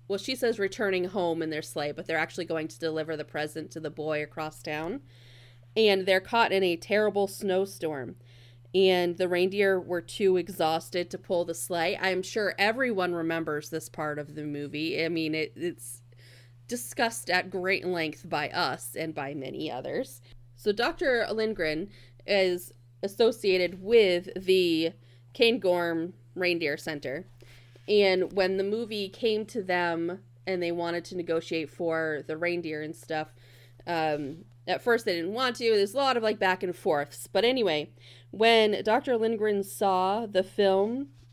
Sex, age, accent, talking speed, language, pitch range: female, 30-49, American, 160 wpm, English, 150-195 Hz